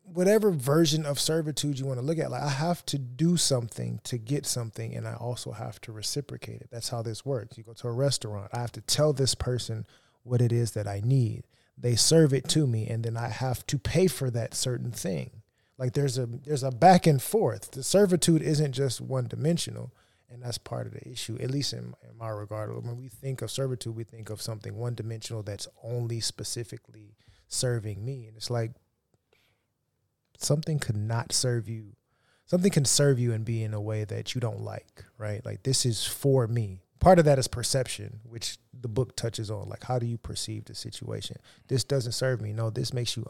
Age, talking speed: 30-49, 215 wpm